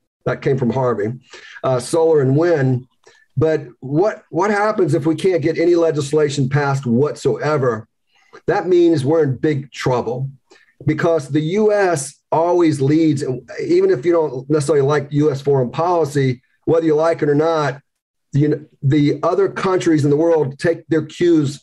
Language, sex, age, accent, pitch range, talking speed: English, male, 40-59, American, 140-165 Hz, 155 wpm